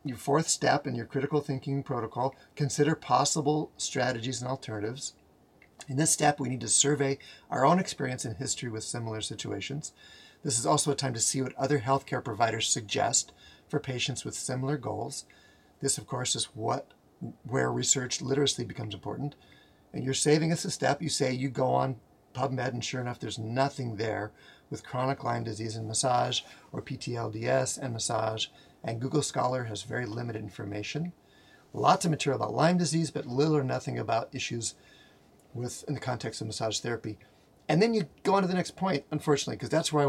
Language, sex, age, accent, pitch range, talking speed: English, male, 40-59, American, 110-140 Hz, 185 wpm